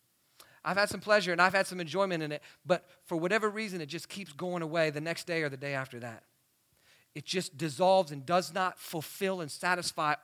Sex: male